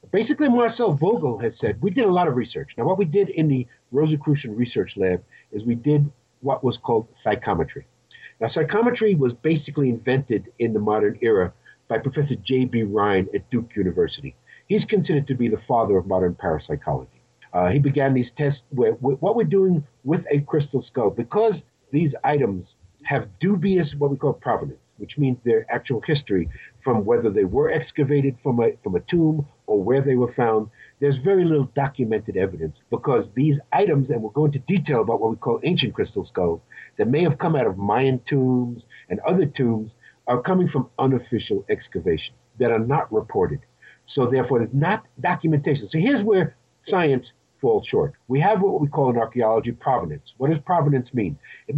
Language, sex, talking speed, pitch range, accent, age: English, male, 185 wpm, 120-160 Hz, American, 50-69